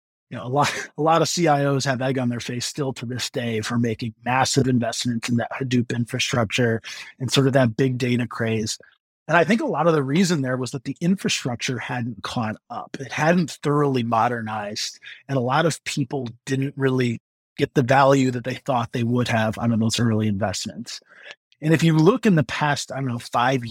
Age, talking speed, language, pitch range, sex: 30-49, 210 wpm, English, 120-145 Hz, male